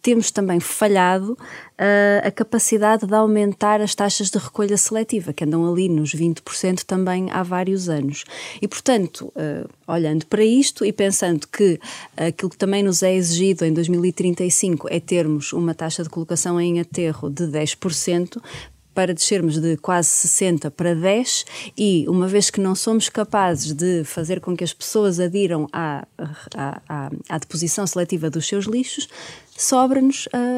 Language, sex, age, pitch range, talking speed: Portuguese, female, 20-39, 170-220 Hz, 155 wpm